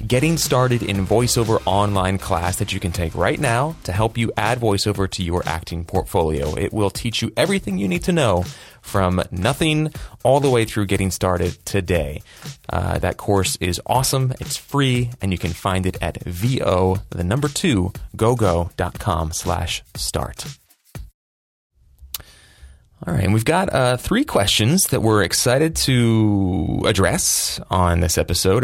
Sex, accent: male, American